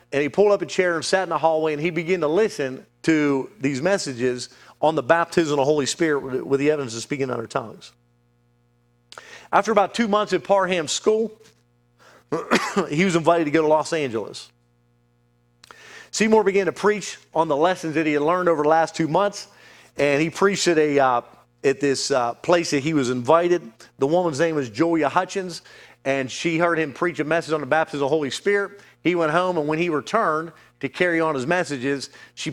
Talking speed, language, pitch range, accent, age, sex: 205 wpm, English, 135-175 Hz, American, 40-59, male